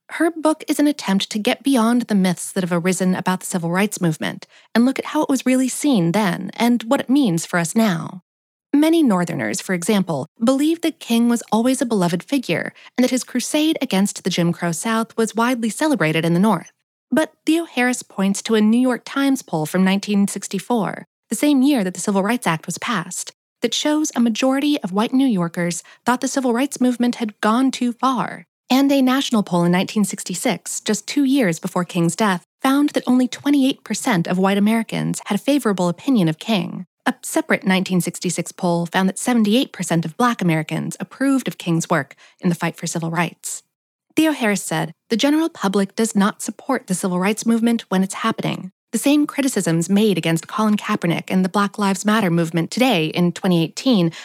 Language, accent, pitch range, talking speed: English, American, 185-255 Hz, 195 wpm